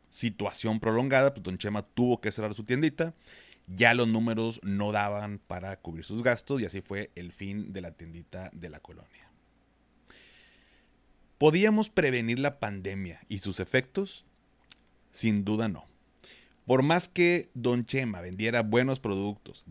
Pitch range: 100-130 Hz